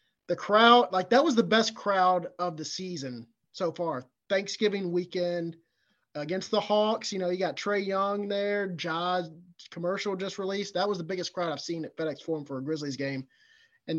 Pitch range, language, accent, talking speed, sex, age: 155-195 Hz, English, American, 190 wpm, male, 30-49